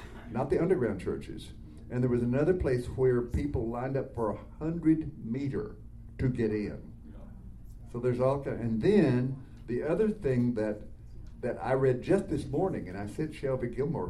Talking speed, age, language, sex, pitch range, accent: 175 wpm, 60-79, English, male, 115-150 Hz, American